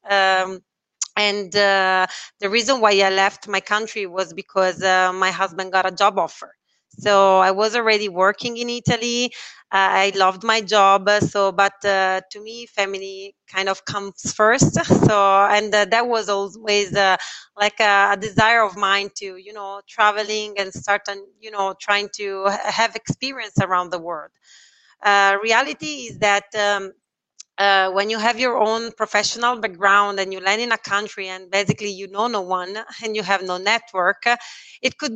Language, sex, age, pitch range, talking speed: English, female, 30-49, 195-220 Hz, 175 wpm